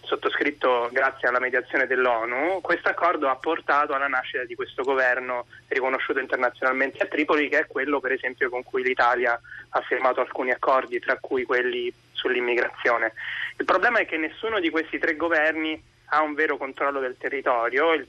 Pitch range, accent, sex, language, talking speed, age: 130-165 Hz, native, male, Italian, 165 wpm, 20-39